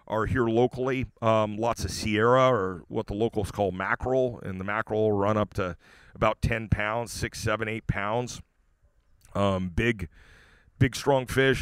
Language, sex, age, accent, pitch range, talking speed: English, male, 40-59, American, 105-125 Hz, 165 wpm